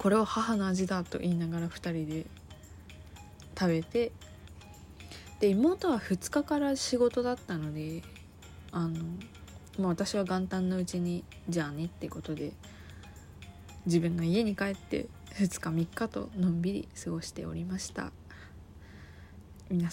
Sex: female